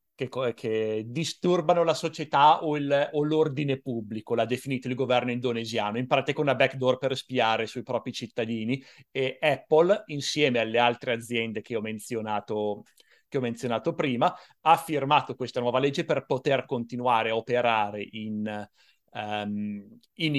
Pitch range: 115-140 Hz